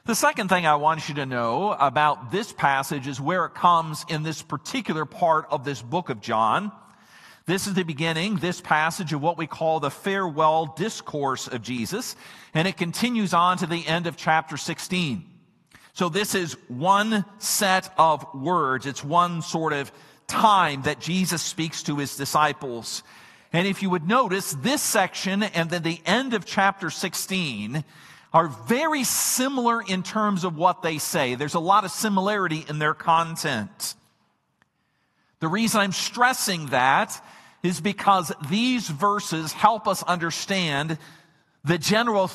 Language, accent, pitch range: English, American, 155-195 Hz